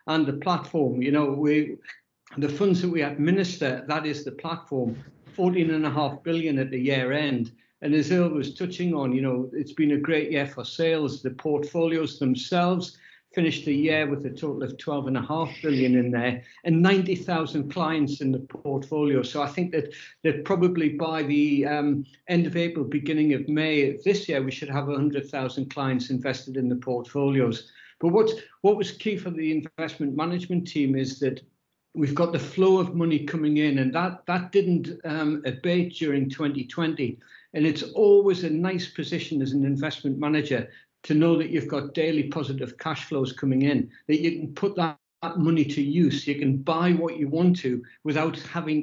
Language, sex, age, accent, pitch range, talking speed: English, male, 60-79, British, 140-165 Hz, 185 wpm